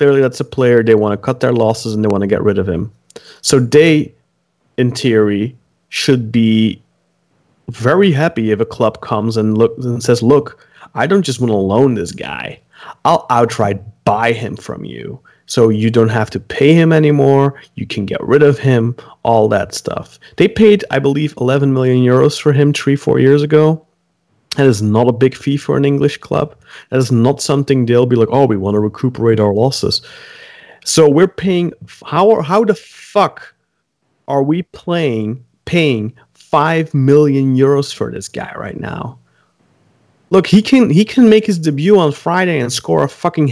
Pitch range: 115-165 Hz